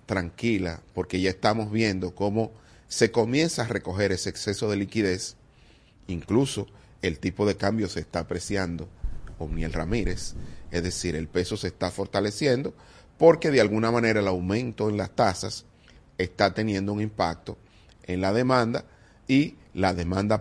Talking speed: 145 wpm